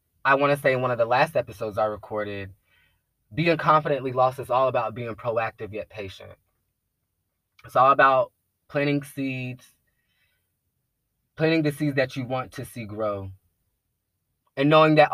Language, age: English, 20-39